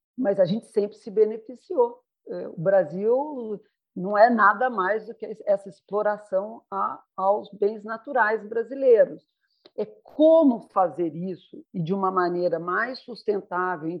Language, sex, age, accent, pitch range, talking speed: Portuguese, female, 50-69, Brazilian, 175-230 Hz, 135 wpm